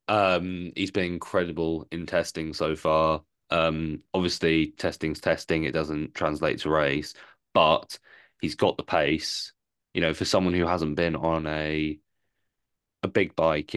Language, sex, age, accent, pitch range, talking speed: English, male, 20-39, British, 80-90 Hz, 150 wpm